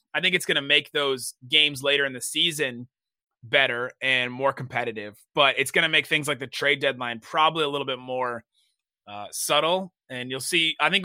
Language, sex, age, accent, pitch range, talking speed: English, male, 30-49, American, 125-160 Hz, 205 wpm